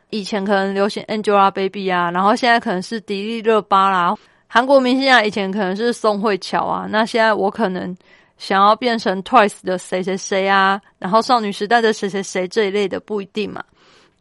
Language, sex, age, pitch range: Chinese, female, 30-49, 195-225 Hz